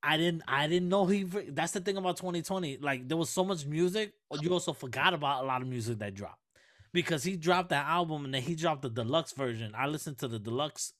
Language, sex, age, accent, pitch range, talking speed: English, male, 20-39, American, 115-155 Hz, 240 wpm